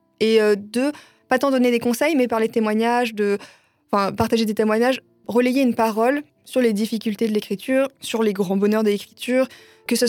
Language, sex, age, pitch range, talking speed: French, female, 20-39, 195-230 Hz, 190 wpm